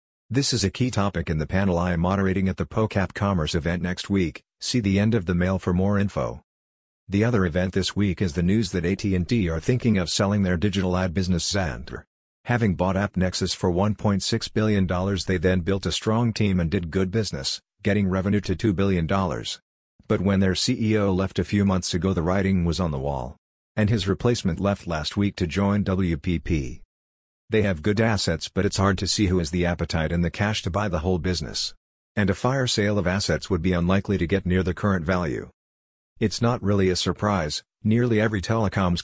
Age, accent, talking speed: 50-69, American, 205 wpm